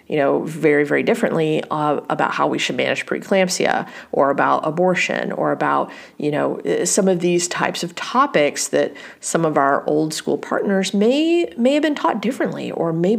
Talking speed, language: 180 wpm, English